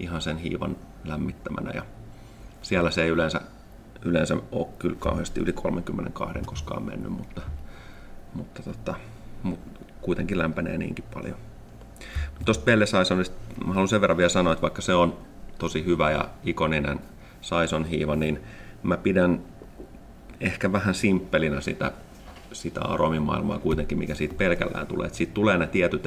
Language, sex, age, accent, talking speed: Finnish, male, 30-49, native, 140 wpm